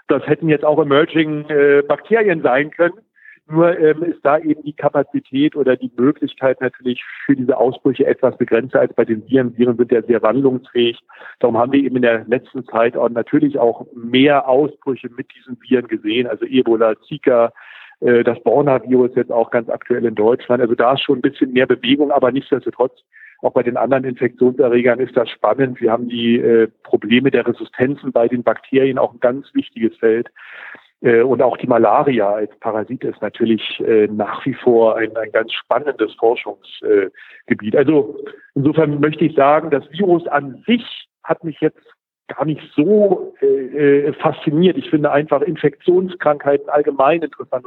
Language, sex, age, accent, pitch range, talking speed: German, male, 50-69, German, 120-160 Hz, 170 wpm